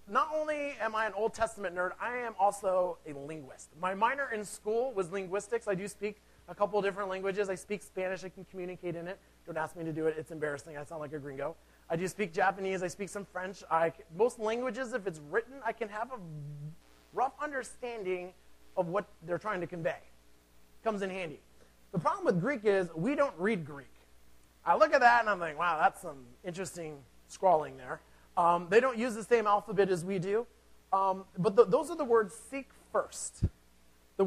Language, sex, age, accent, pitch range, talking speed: English, male, 30-49, American, 155-225 Hz, 205 wpm